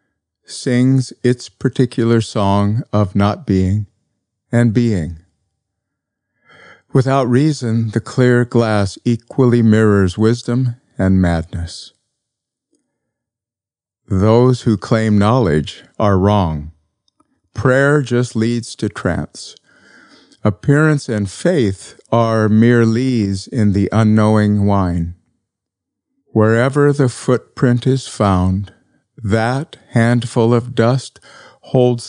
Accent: American